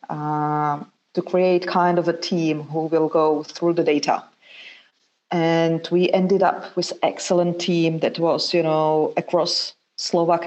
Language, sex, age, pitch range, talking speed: English, female, 30-49, 155-175 Hz, 155 wpm